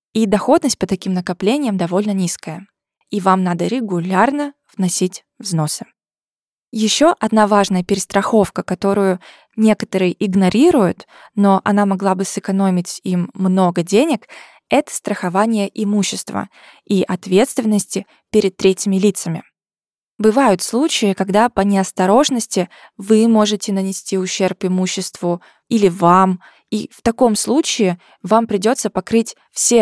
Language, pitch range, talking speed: Russian, 185-225 Hz, 115 wpm